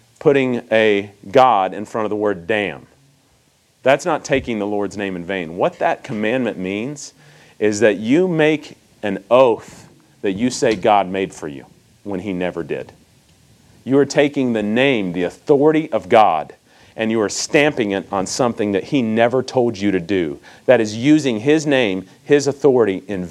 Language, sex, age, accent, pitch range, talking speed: English, male, 40-59, American, 105-165 Hz, 180 wpm